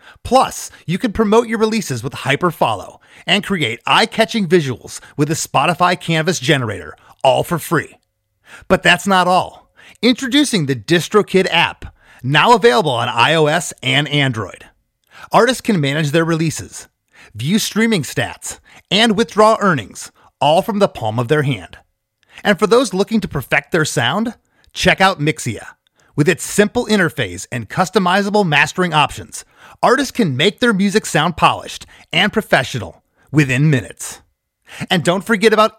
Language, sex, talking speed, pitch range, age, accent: English, male, 145 wpm, 145-215 Hz, 30-49, American